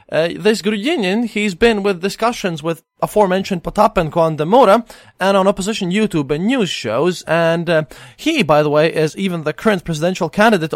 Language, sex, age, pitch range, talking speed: English, male, 20-39, 135-200 Hz, 175 wpm